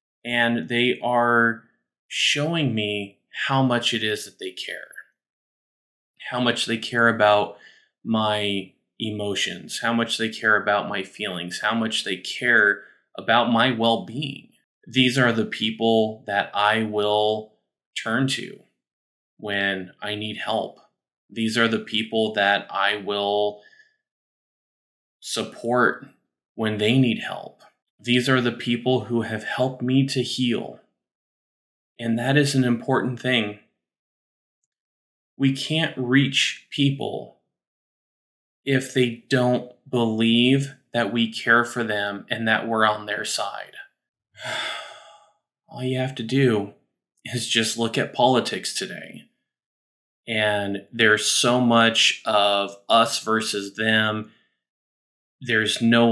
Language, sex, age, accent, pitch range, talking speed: English, male, 20-39, American, 105-125 Hz, 120 wpm